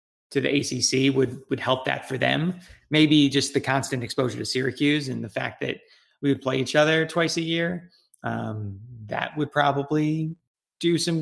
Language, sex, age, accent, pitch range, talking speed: English, male, 20-39, American, 120-145 Hz, 180 wpm